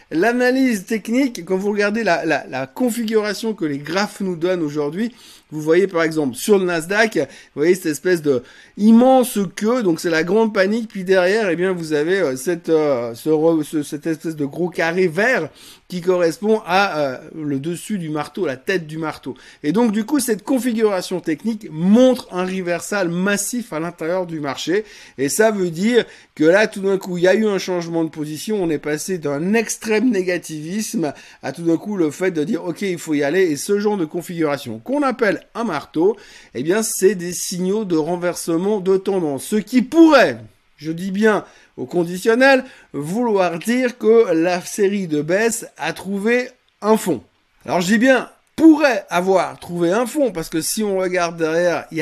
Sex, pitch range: male, 160-215 Hz